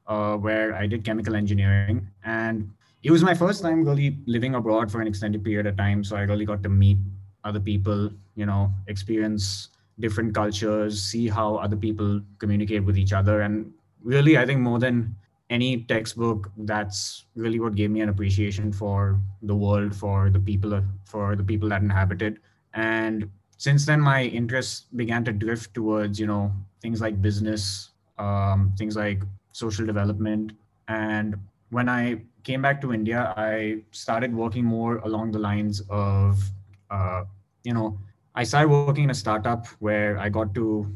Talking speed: 170 wpm